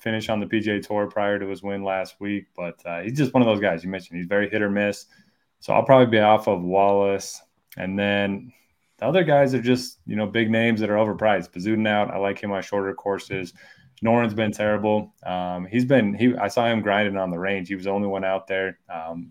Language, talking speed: English, 240 wpm